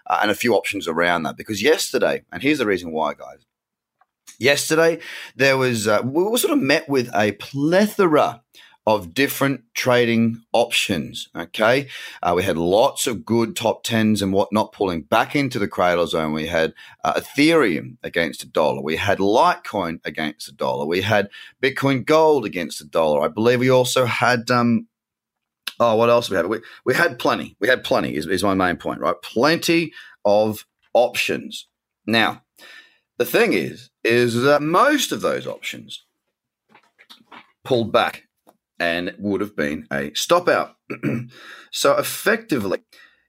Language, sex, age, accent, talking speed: English, male, 30-49, Australian, 165 wpm